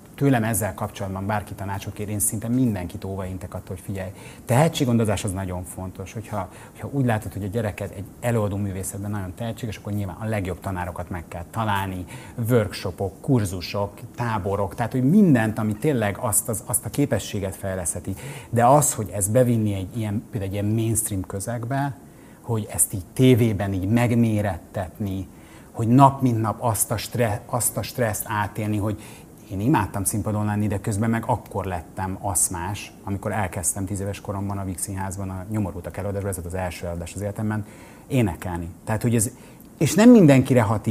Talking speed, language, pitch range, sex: 165 wpm, Hungarian, 100-120 Hz, male